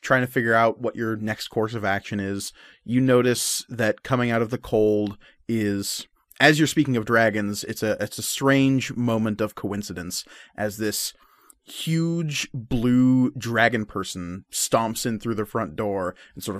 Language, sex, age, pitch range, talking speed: English, male, 30-49, 110-135 Hz, 170 wpm